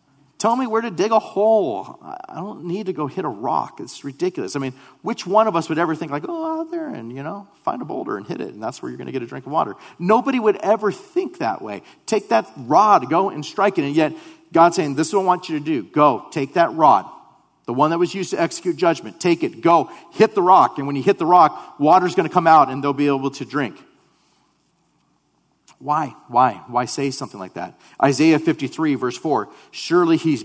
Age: 40-59